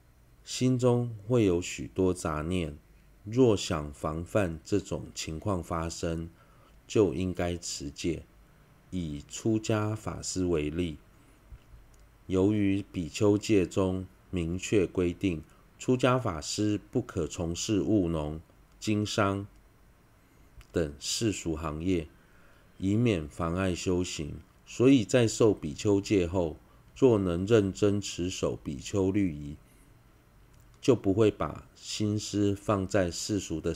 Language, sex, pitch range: Chinese, male, 85-105 Hz